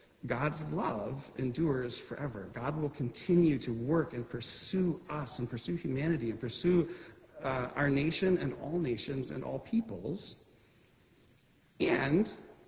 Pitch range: 120-160 Hz